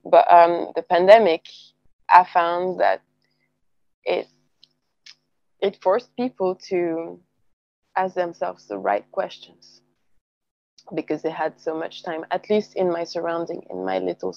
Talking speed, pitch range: 130 wpm, 165-190 Hz